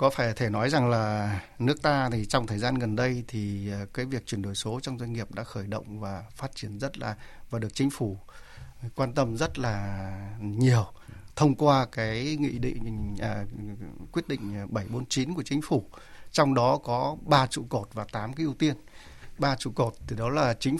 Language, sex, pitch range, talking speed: Vietnamese, male, 110-140 Hz, 200 wpm